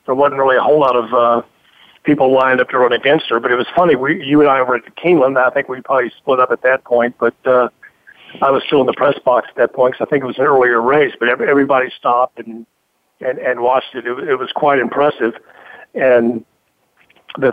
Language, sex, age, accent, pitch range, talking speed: English, male, 50-69, American, 120-140 Hz, 240 wpm